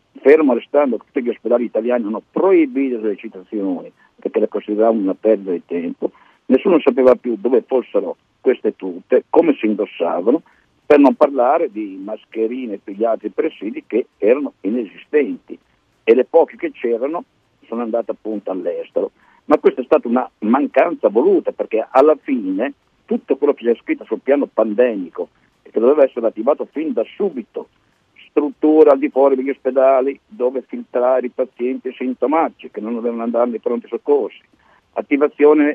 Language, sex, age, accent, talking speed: Italian, male, 50-69, native, 155 wpm